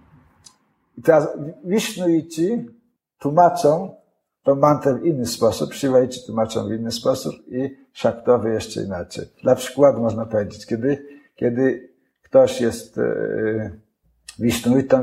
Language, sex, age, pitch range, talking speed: Polish, male, 50-69, 115-145 Hz, 110 wpm